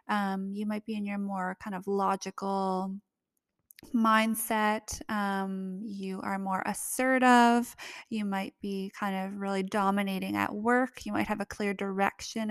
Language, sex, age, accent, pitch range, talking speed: English, female, 20-39, American, 190-220 Hz, 145 wpm